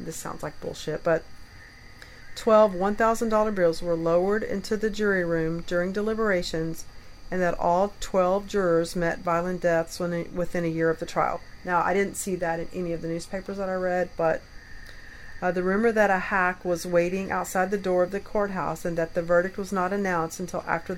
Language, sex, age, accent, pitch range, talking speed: English, female, 40-59, American, 170-195 Hz, 190 wpm